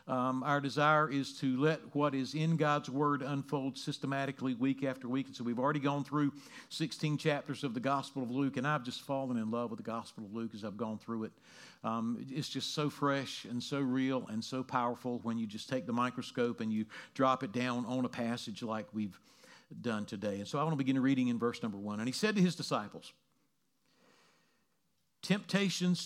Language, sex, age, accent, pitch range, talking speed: English, male, 50-69, American, 130-180 Hz, 210 wpm